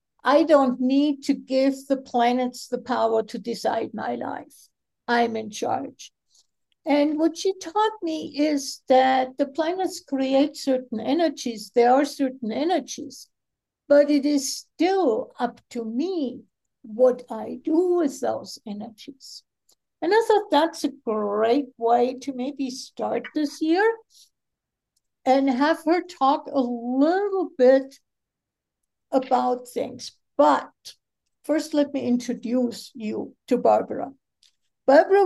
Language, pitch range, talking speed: English, 245-300 Hz, 130 wpm